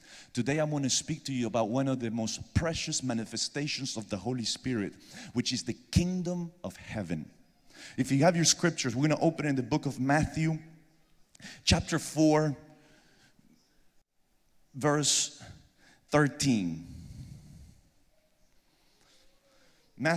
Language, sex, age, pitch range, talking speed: English, male, 40-59, 125-175 Hz, 135 wpm